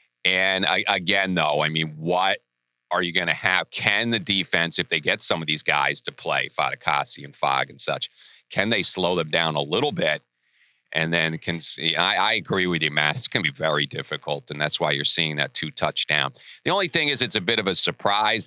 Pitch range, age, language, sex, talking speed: 75-95 Hz, 40-59, English, male, 230 wpm